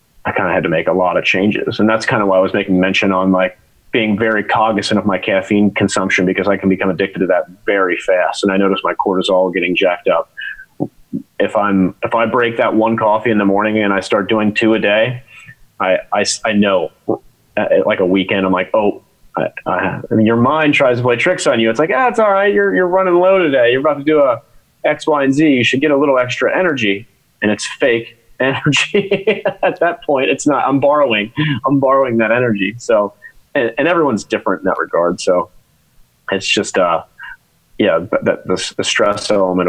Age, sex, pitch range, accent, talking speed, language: 30-49, male, 100-135 Hz, American, 220 wpm, English